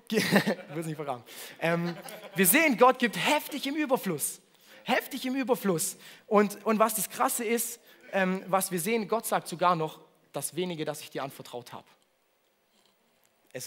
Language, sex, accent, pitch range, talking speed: German, male, German, 175-230 Hz, 135 wpm